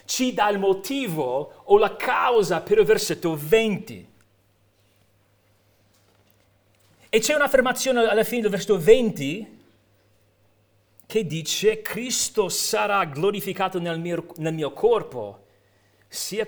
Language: Italian